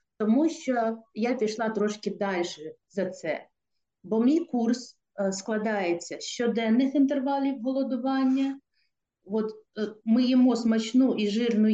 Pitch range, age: 195-260 Hz, 50-69